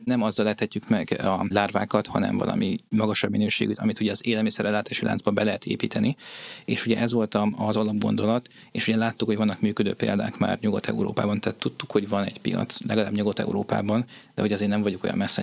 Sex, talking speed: male, 185 wpm